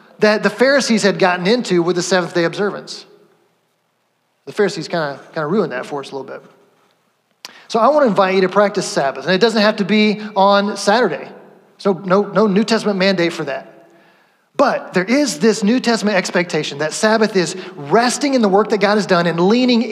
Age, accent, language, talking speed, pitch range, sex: 30-49, American, English, 200 wpm, 175-215 Hz, male